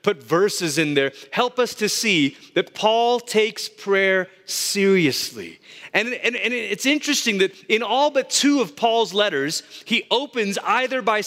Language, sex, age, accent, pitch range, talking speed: English, male, 30-49, American, 160-235 Hz, 160 wpm